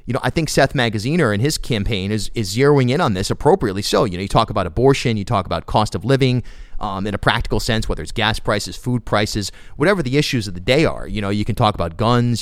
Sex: male